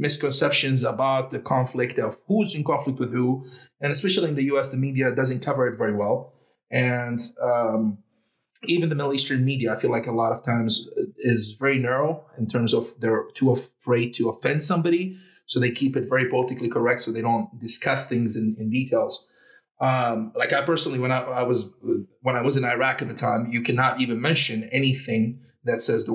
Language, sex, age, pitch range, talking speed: English, male, 30-49, 115-145 Hz, 200 wpm